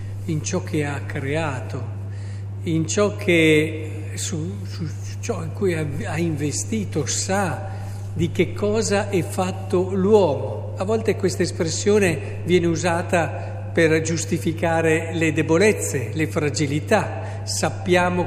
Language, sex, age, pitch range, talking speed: Italian, male, 50-69, 100-165 Hz, 115 wpm